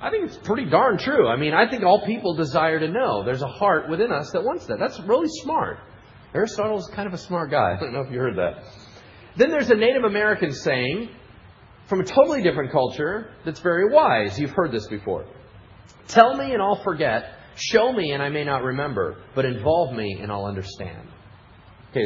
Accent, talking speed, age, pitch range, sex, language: American, 210 wpm, 40-59, 110-180 Hz, male, English